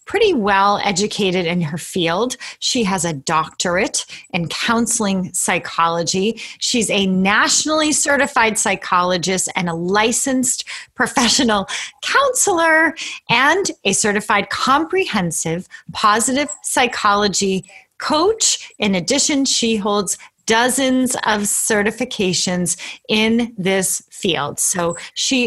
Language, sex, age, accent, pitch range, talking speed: English, female, 30-49, American, 190-260 Hz, 100 wpm